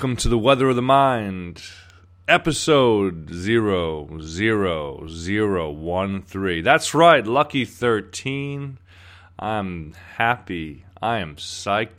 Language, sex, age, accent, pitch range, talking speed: English, male, 30-49, American, 90-125 Hz, 90 wpm